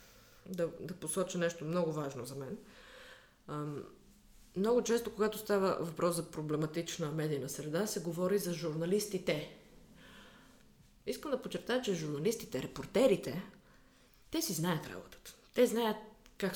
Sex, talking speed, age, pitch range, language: female, 125 wpm, 30-49, 160-215 Hz, Bulgarian